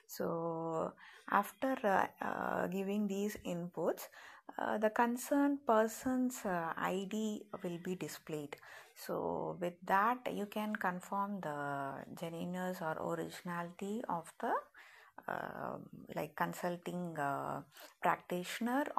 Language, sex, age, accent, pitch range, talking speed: Tamil, female, 20-39, native, 165-205 Hz, 105 wpm